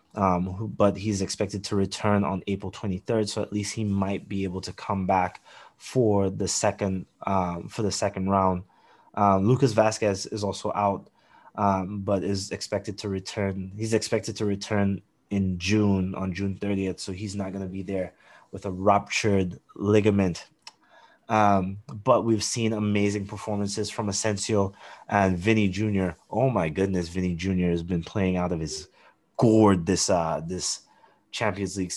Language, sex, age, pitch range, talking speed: English, male, 20-39, 95-105 Hz, 160 wpm